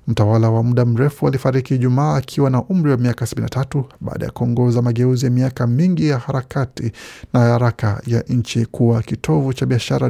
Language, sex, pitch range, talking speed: Swahili, male, 115-135 Hz, 170 wpm